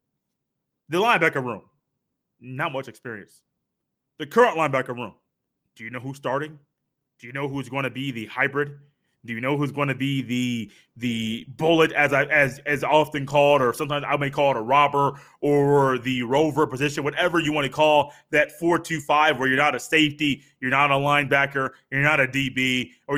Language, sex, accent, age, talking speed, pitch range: English, male, American, 20-39, 195 wpm, 140-170 Hz